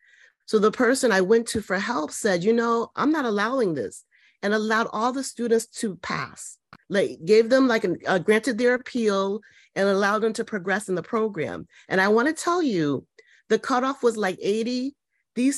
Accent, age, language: American, 40-59, English